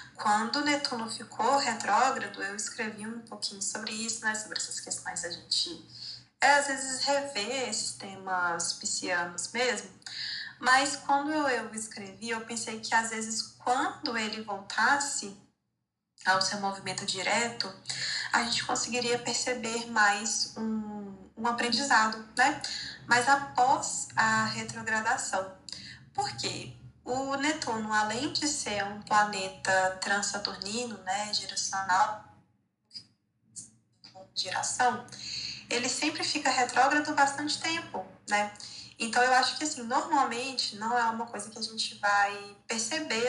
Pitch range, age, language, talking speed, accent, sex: 200-255 Hz, 20-39, Portuguese, 120 wpm, Brazilian, female